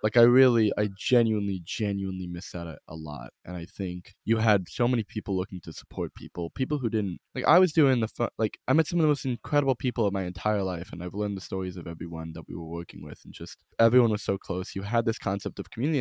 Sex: male